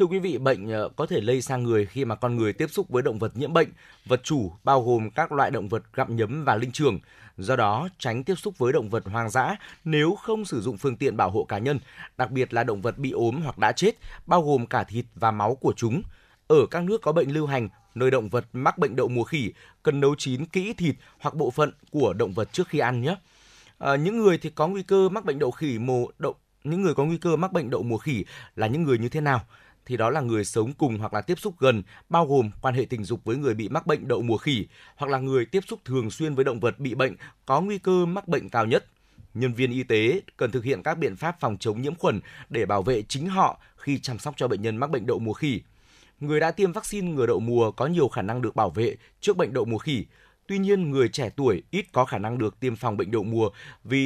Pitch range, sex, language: 115-155 Hz, male, Vietnamese